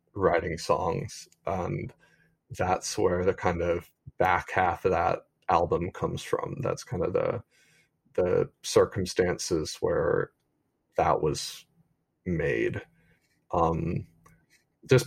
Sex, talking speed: male, 110 wpm